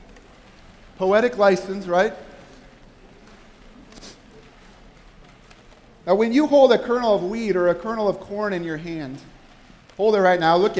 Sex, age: male, 40-59